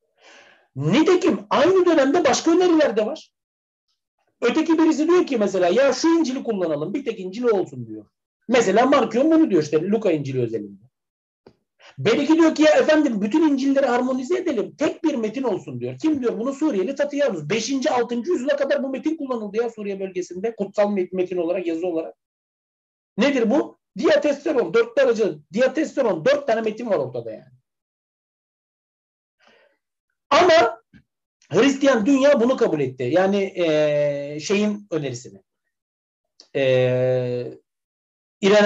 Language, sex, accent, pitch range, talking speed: Turkish, male, native, 185-305 Hz, 130 wpm